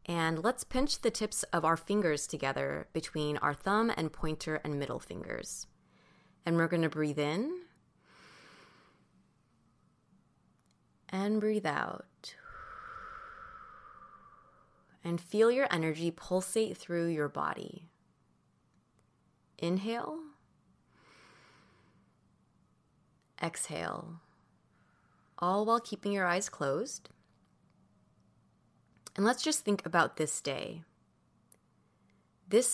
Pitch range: 155-210 Hz